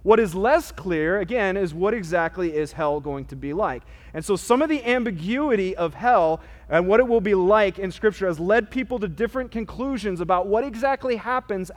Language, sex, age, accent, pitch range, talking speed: English, male, 30-49, American, 180-220 Hz, 205 wpm